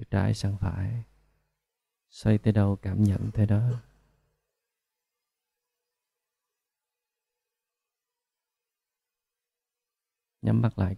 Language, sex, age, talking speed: Vietnamese, male, 20-39, 70 wpm